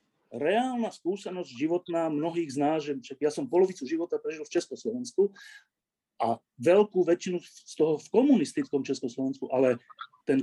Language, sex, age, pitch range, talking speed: Slovak, male, 40-59, 135-200 Hz, 130 wpm